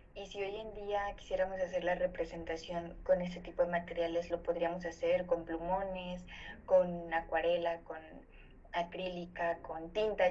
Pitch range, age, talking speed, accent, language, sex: 175-215 Hz, 20-39, 145 wpm, Mexican, Spanish, female